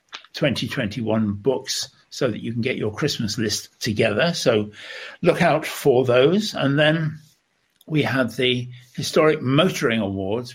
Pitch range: 105-125 Hz